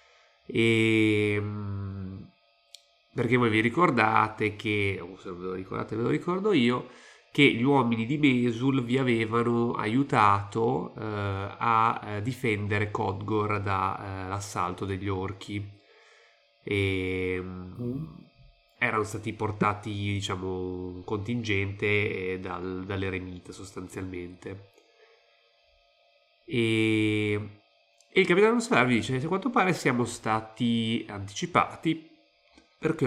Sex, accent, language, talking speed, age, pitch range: male, native, Italian, 100 wpm, 30-49, 100-120 Hz